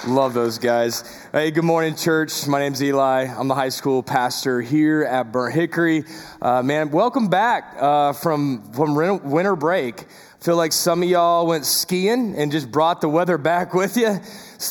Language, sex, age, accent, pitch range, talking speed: English, male, 20-39, American, 150-185 Hz, 185 wpm